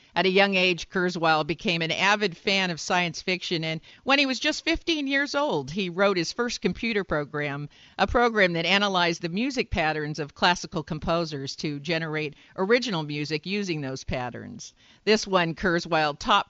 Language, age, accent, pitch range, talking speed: English, 50-69, American, 155-195 Hz, 170 wpm